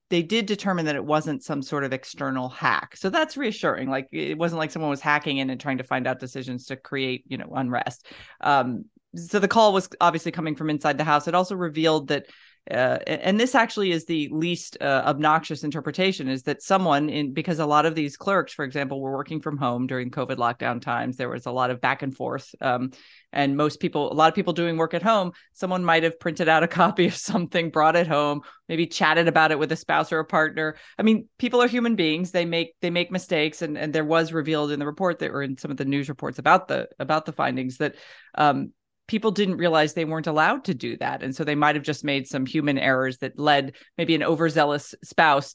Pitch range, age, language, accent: 145-180 Hz, 30-49, English, American